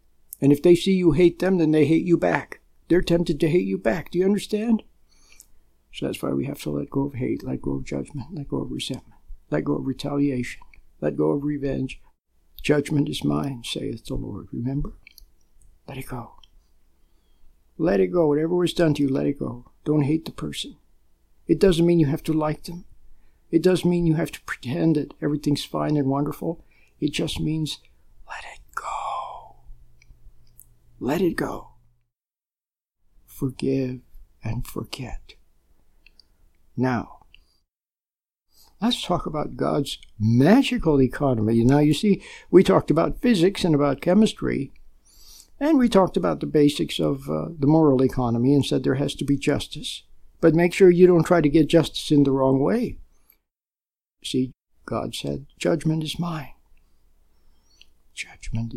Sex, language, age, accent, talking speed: male, English, 60-79, American, 160 wpm